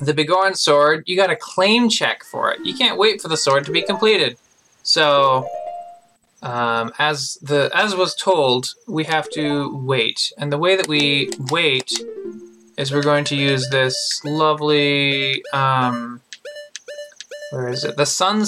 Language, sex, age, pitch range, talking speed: English, male, 20-39, 135-195 Hz, 160 wpm